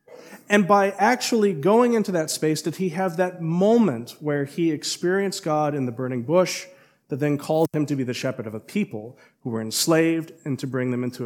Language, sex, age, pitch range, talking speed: English, male, 40-59, 125-150 Hz, 210 wpm